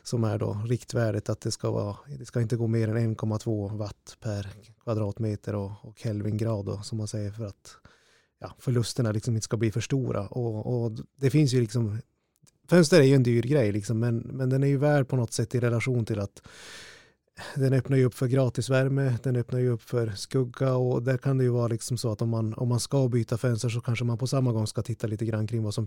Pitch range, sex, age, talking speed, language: 110-125 Hz, male, 20-39, 225 wpm, Swedish